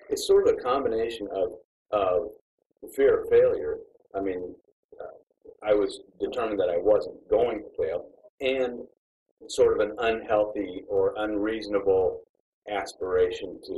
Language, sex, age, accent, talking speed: English, male, 50-69, American, 135 wpm